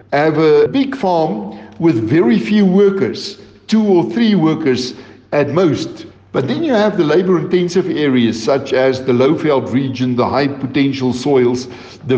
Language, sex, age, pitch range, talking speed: English, male, 60-79, 135-195 Hz, 155 wpm